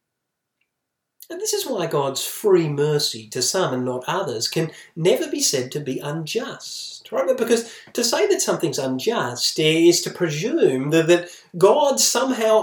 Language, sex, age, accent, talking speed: English, male, 30-49, Australian, 145 wpm